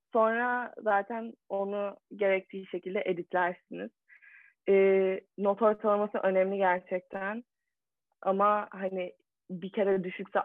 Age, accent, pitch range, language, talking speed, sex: 30-49, native, 190-225 Hz, Turkish, 90 wpm, female